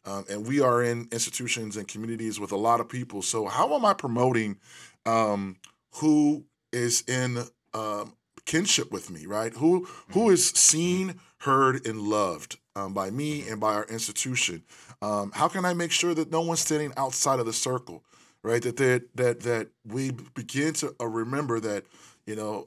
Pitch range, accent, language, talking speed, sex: 105-125 Hz, American, English, 175 wpm, male